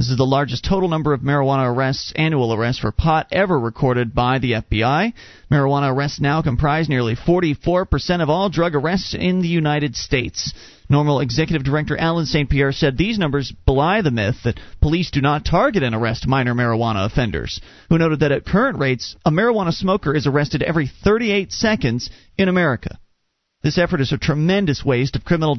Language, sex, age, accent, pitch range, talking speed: English, male, 40-59, American, 125-160 Hz, 185 wpm